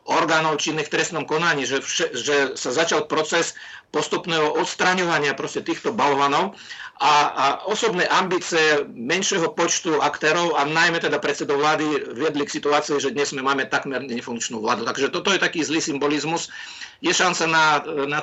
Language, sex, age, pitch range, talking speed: Czech, male, 50-69, 140-155 Hz, 160 wpm